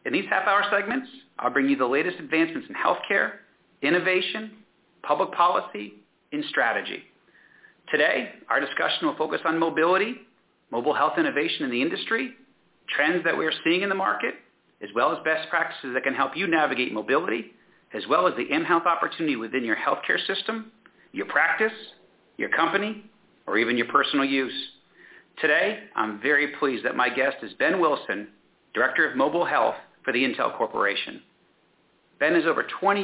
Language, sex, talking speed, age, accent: English, male, 160 wpm, 40-59, American